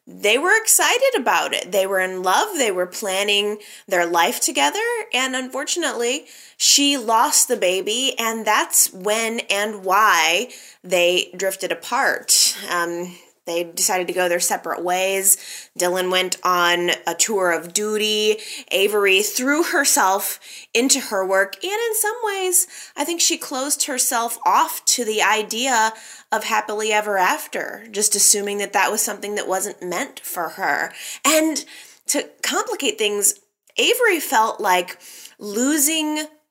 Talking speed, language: 140 wpm, English